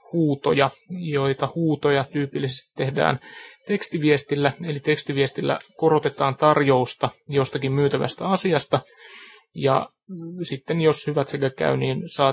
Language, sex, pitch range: Finnish, male, 135-170 Hz